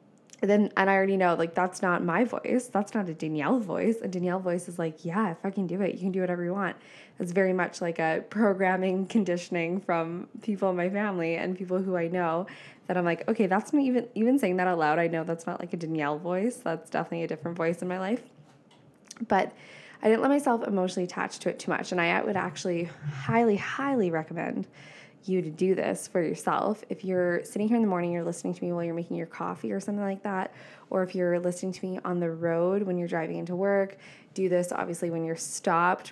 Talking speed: 235 wpm